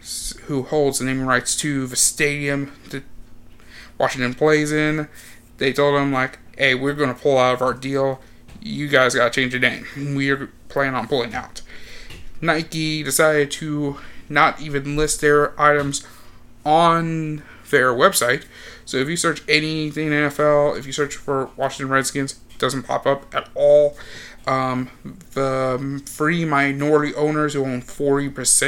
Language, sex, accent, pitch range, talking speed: English, male, American, 135-150 Hz, 160 wpm